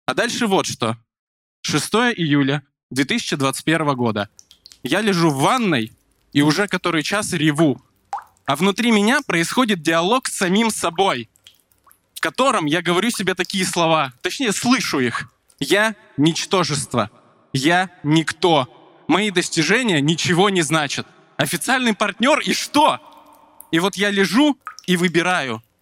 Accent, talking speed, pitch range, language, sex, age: native, 125 wpm, 145-200 Hz, Russian, male, 20-39